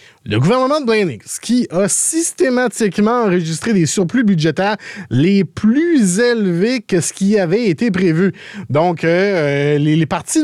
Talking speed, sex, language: 145 wpm, male, English